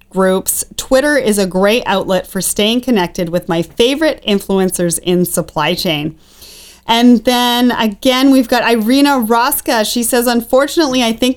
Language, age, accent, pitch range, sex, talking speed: English, 30-49, American, 200-260 Hz, female, 150 wpm